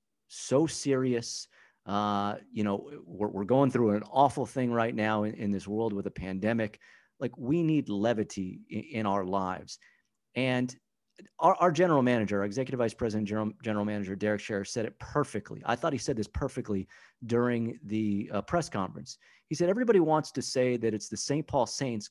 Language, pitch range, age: English, 105-145 Hz, 30-49